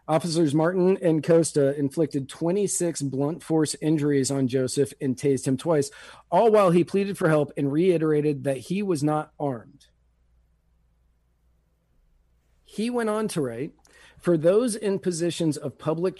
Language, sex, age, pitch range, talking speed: English, male, 40-59, 135-175 Hz, 145 wpm